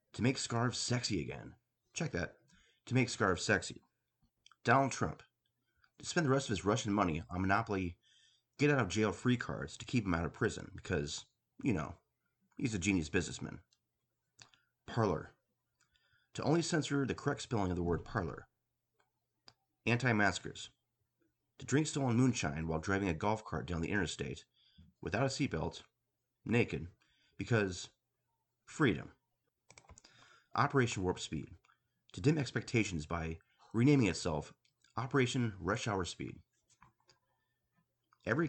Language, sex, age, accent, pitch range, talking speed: English, male, 30-49, American, 90-125 Hz, 130 wpm